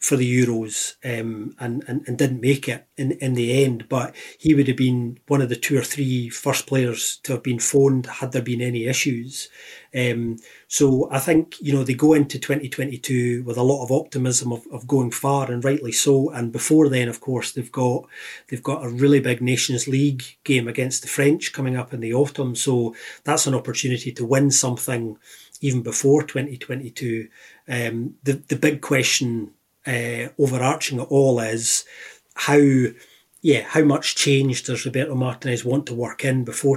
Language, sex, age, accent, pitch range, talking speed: English, male, 30-49, British, 120-140 Hz, 190 wpm